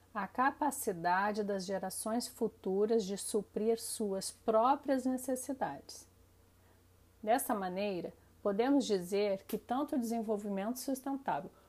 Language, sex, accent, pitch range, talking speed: Portuguese, female, Brazilian, 195-230 Hz, 100 wpm